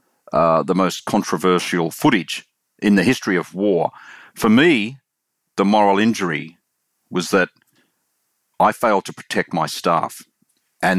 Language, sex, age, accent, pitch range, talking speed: English, male, 40-59, Australian, 85-105 Hz, 130 wpm